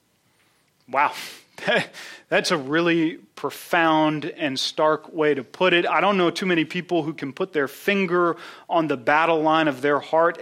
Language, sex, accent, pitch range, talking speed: English, male, American, 145-195 Hz, 165 wpm